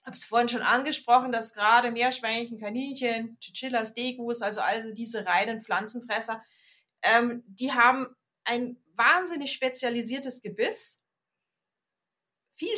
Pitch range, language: 225-280 Hz, German